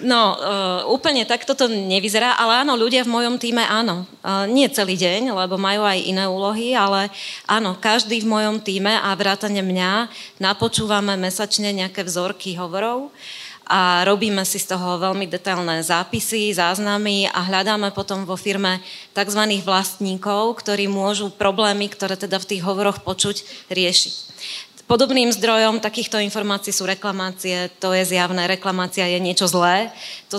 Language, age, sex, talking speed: Slovak, 30-49, female, 150 wpm